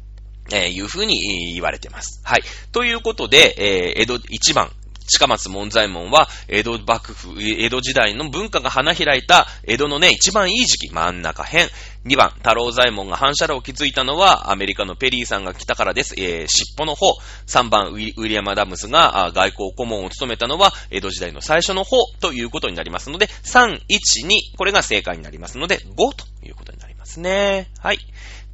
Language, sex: Japanese, male